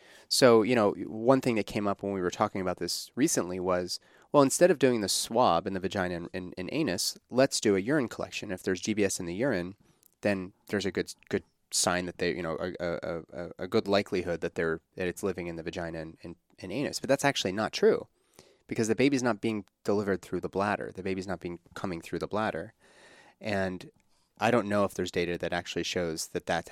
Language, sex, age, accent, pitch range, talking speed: English, male, 30-49, American, 90-110 Hz, 230 wpm